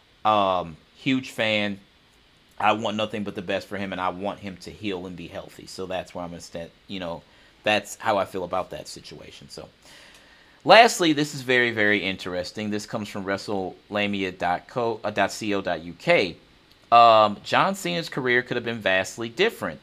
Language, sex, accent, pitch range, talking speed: English, male, American, 95-115 Hz, 170 wpm